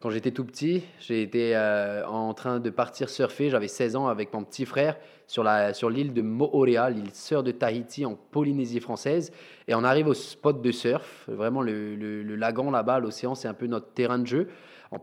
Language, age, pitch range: French, 20-39, 115-140 Hz